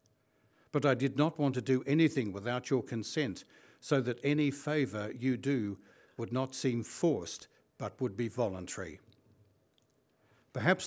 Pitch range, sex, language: 110-135 Hz, male, English